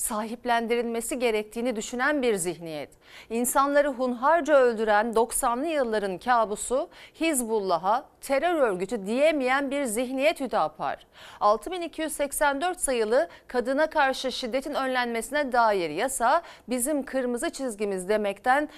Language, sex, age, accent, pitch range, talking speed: Turkish, female, 40-59, native, 225-290 Hz, 95 wpm